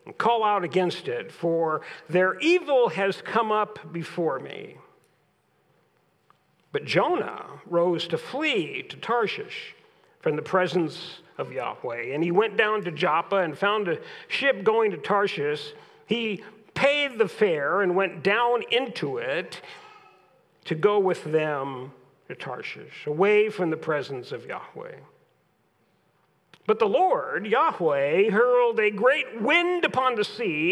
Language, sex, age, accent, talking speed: English, male, 50-69, American, 135 wpm